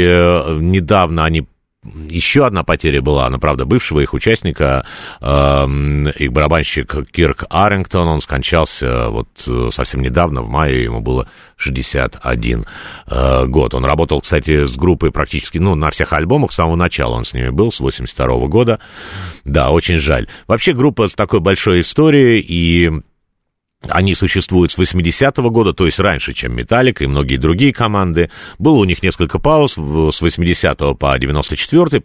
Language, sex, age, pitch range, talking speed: Russian, male, 50-69, 70-95 Hz, 150 wpm